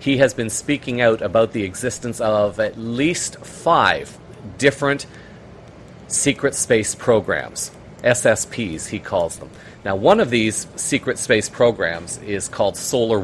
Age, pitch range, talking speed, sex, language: 40-59, 105-125 Hz, 135 wpm, male, English